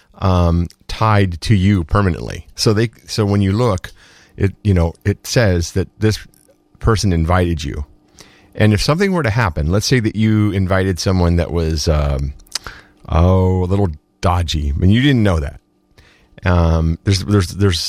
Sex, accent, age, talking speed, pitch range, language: male, American, 30-49, 170 wpm, 85-110 Hz, English